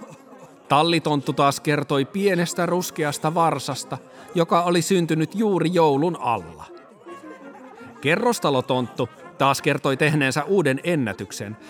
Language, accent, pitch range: Finnish, native, 135-175 Hz